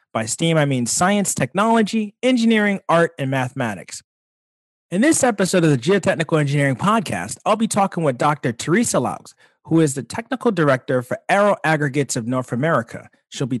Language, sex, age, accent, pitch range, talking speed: English, male, 30-49, American, 135-200 Hz, 170 wpm